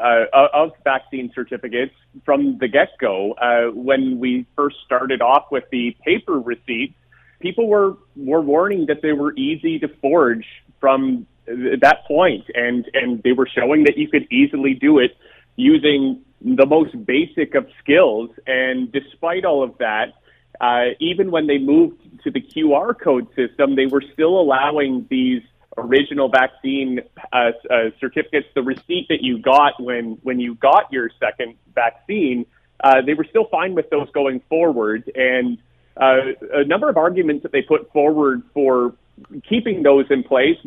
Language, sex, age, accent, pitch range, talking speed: English, male, 30-49, American, 125-150 Hz, 160 wpm